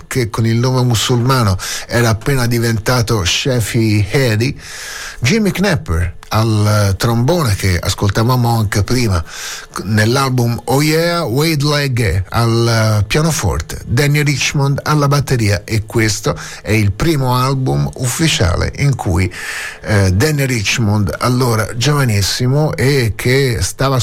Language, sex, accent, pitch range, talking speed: Italian, male, native, 105-140 Hz, 115 wpm